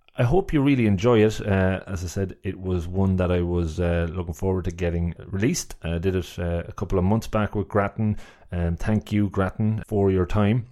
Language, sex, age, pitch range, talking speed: English, male, 30-49, 90-110 Hz, 220 wpm